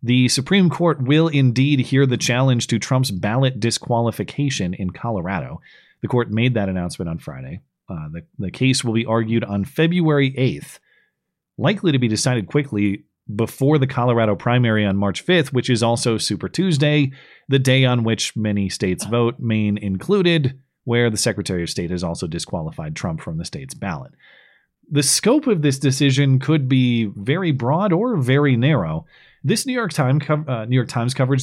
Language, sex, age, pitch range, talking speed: English, male, 30-49, 110-140 Hz, 170 wpm